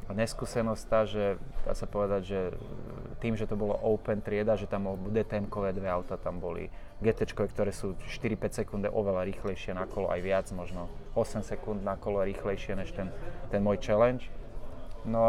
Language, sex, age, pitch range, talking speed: Slovak, male, 20-39, 95-110 Hz, 175 wpm